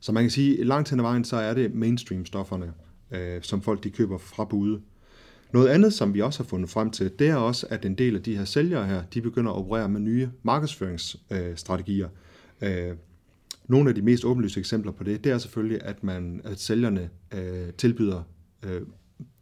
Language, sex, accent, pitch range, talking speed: Danish, male, native, 95-125 Hz, 205 wpm